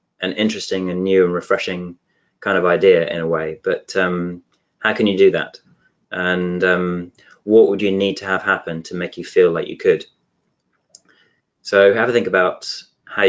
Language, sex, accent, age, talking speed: English, male, British, 20-39, 185 wpm